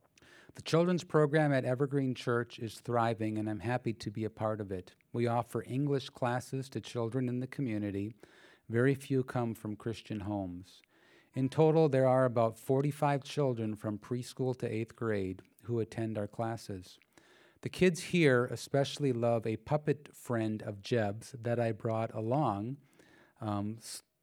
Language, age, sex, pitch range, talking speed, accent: English, 40-59, male, 110-135 Hz, 155 wpm, American